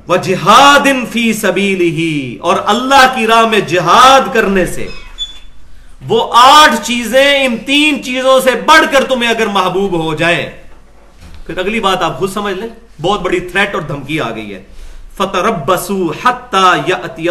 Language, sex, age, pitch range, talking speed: Urdu, male, 40-59, 170-230 Hz, 160 wpm